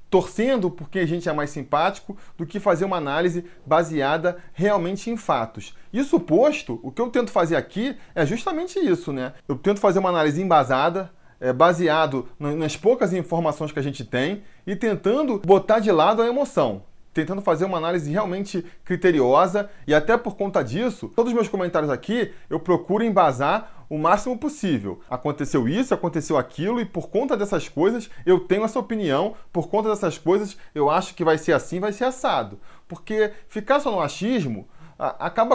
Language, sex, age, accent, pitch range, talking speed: Portuguese, male, 20-39, Brazilian, 155-210 Hz, 175 wpm